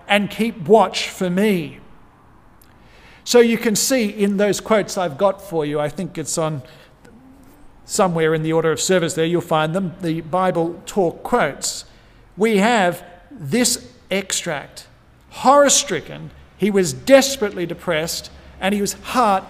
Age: 50-69